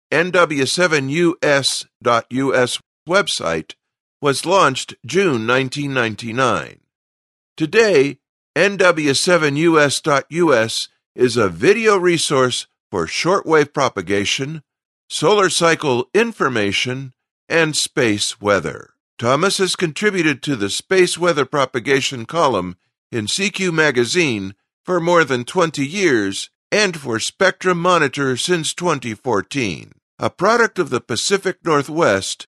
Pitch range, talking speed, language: 125-175 Hz, 90 wpm, English